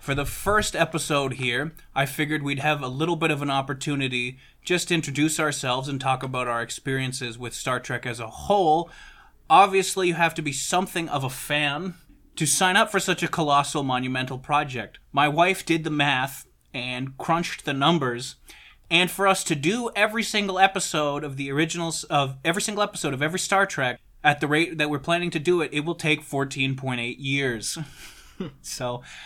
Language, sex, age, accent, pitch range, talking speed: English, male, 20-39, American, 130-170 Hz, 190 wpm